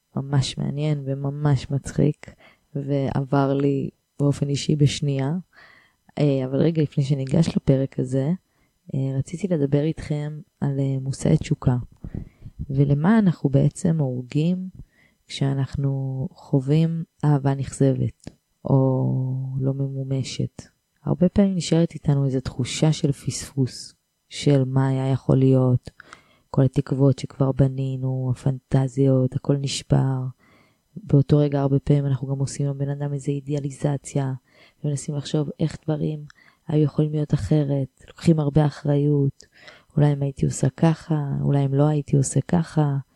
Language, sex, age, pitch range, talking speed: English, female, 20-39, 135-150 Hz, 115 wpm